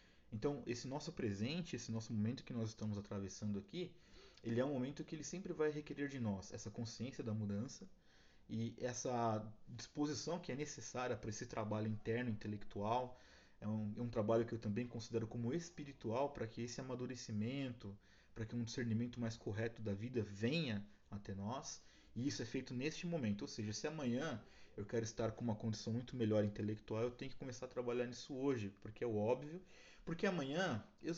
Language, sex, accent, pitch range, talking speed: Portuguese, male, Brazilian, 110-145 Hz, 190 wpm